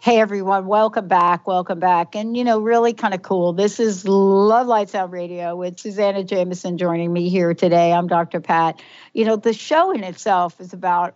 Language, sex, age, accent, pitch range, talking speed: English, female, 60-79, American, 175-230 Hz, 200 wpm